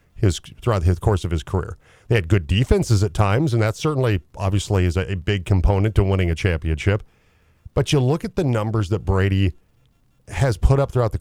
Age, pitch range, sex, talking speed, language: 40-59, 95-150 Hz, male, 210 wpm, English